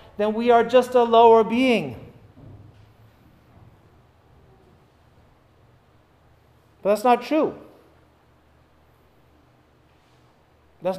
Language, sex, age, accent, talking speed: English, male, 40-59, American, 65 wpm